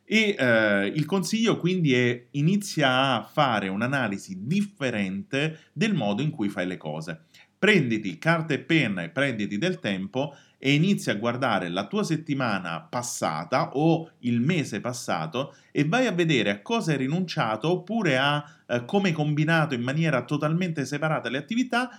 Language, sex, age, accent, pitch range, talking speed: Italian, male, 30-49, native, 120-175 Hz, 160 wpm